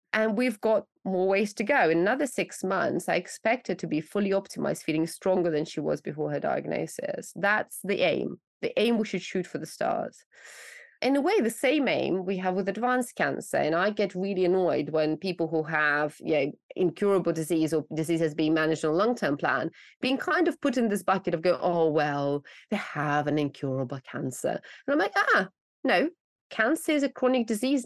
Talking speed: 205 wpm